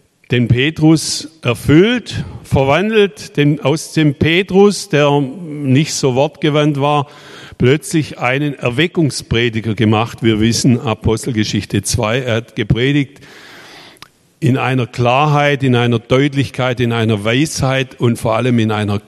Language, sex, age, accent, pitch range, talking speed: German, male, 50-69, German, 115-150 Hz, 120 wpm